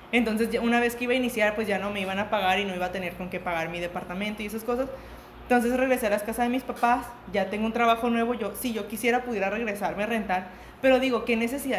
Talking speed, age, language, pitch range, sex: 265 wpm, 20-39, Spanish, 200-250 Hz, female